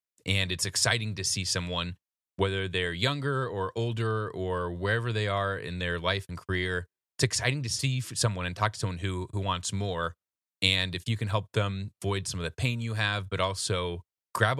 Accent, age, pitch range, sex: American, 30-49, 90-110 Hz, male